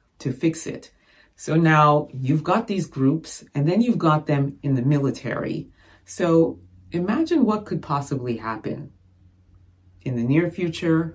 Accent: American